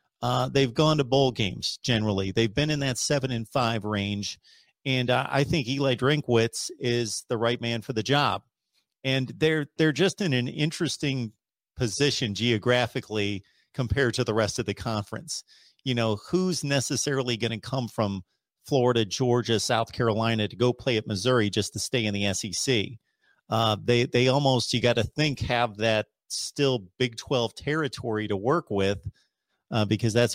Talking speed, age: 170 wpm, 40-59